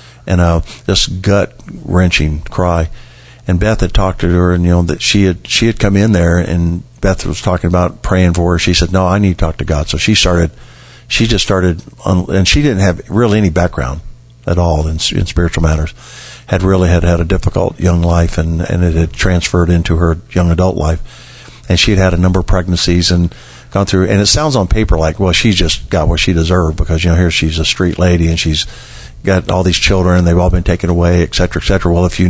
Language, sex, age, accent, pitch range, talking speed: English, male, 50-69, American, 85-95 Hz, 235 wpm